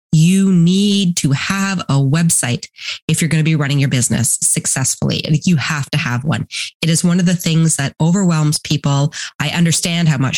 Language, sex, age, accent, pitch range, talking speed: English, female, 30-49, American, 140-170 Hz, 195 wpm